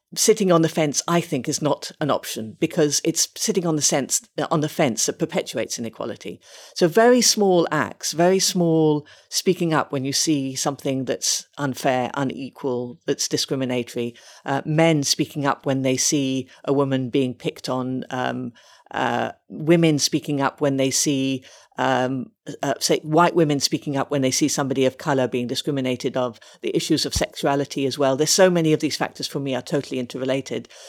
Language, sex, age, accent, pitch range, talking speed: English, female, 50-69, British, 135-165 Hz, 170 wpm